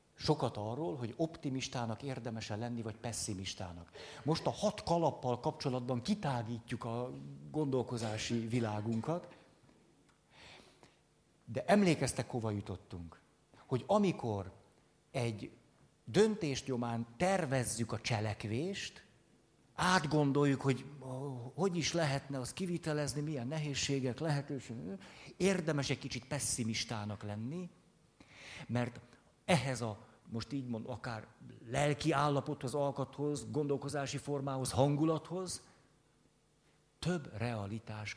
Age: 50-69